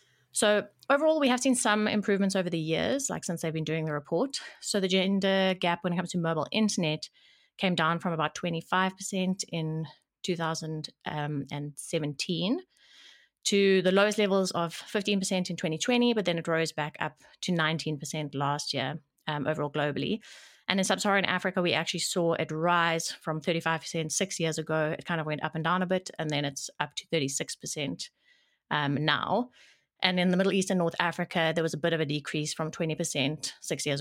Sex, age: female, 30-49